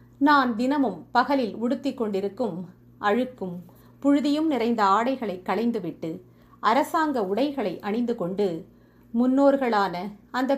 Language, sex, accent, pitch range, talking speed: Tamil, female, native, 195-260 Hz, 90 wpm